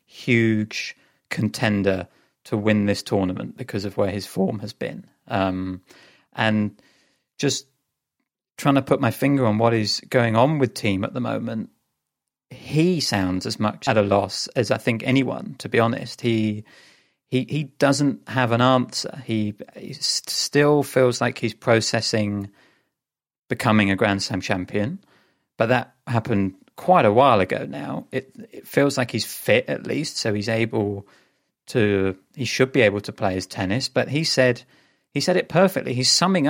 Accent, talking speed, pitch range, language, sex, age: British, 165 wpm, 105-135 Hz, English, male, 30-49